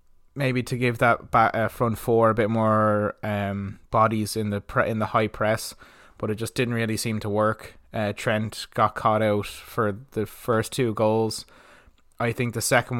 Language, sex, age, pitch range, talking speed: English, male, 20-39, 105-110 Hz, 195 wpm